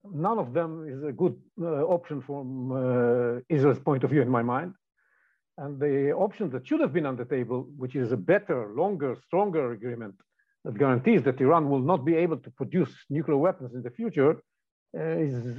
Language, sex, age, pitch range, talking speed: English, male, 50-69, 135-180 Hz, 195 wpm